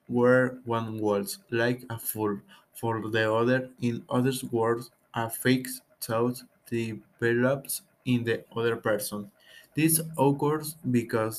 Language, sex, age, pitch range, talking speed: English, male, 20-39, 115-135 Hz, 120 wpm